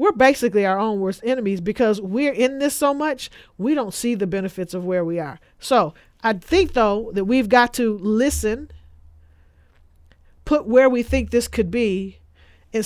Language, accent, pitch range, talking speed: English, American, 190-225 Hz, 175 wpm